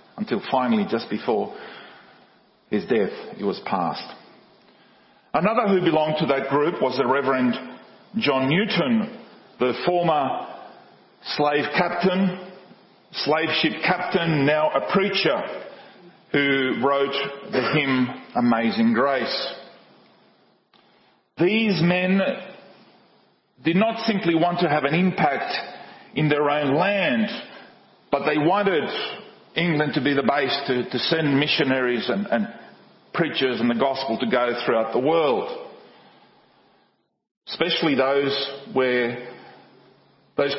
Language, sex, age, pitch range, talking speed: English, male, 40-59, 135-200 Hz, 115 wpm